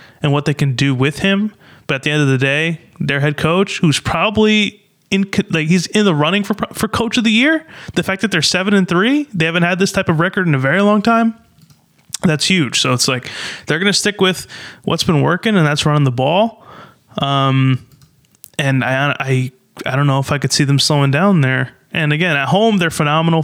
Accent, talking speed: American, 230 wpm